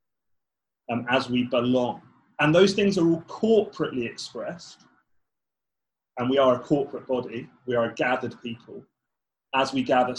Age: 30-49